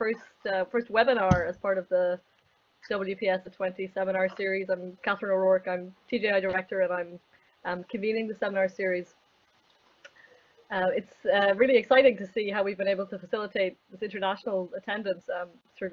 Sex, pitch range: female, 185-215 Hz